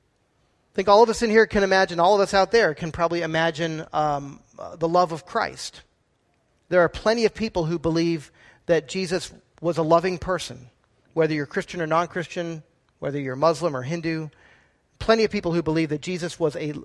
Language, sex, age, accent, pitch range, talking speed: English, male, 40-59, American, 150-185 Hz, 190 wpm